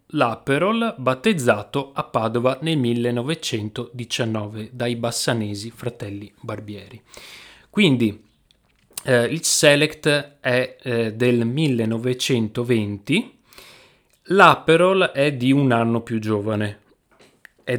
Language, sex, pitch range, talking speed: Italian, male, 115-140 Hz, 90 wpm